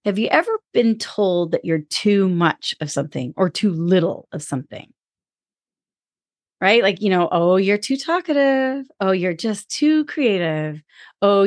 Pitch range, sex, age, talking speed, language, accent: 165-225 Hz, female, 30-49, 155 wpm, English, American